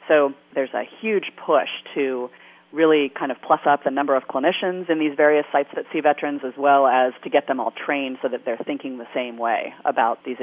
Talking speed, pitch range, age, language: 225 wpm, 130-155 Hz, 40-59, English